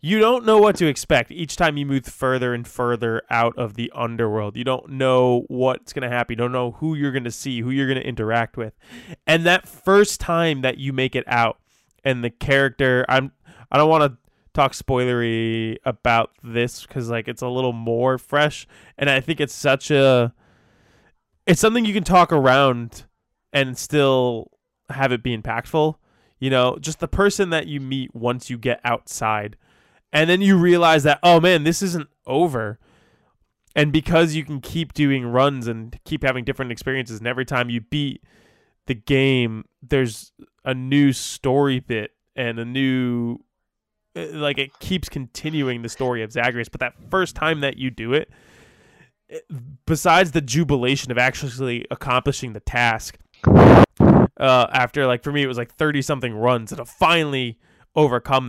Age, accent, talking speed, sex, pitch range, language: 20-39, American, 175 wpm, male, 120-150 Hz, English